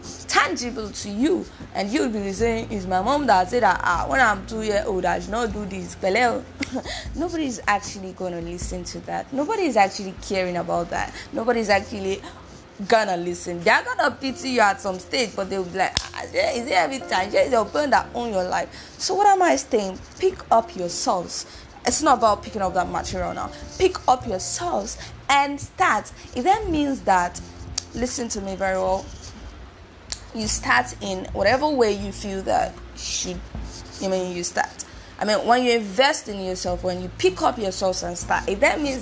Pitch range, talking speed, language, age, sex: 185-255 Hz, 200 wpm, English, 20-39, female